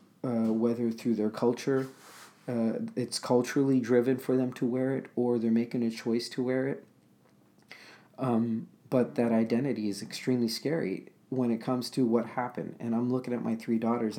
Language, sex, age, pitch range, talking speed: English, male, 40-59, 115-130 Hz, 180 wpm